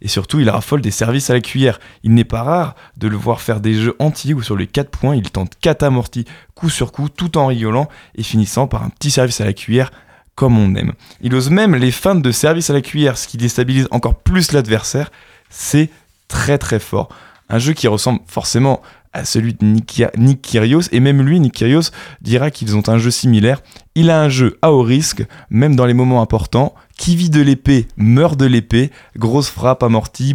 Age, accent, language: 20-39, French, French